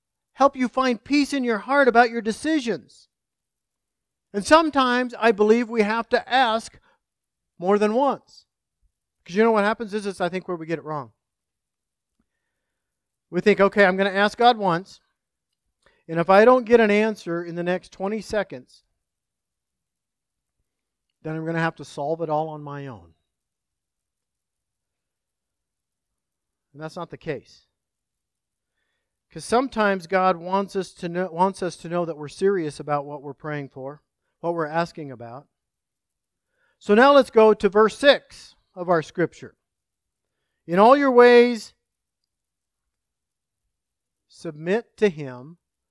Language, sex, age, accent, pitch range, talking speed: English, male, 50-69, American, 160-220 Hz, 150 wpm